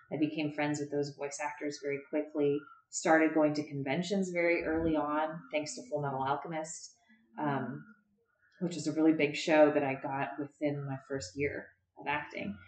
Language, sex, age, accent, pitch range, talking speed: English, female, 20-39, American, 150-215 Hz, 175 wpm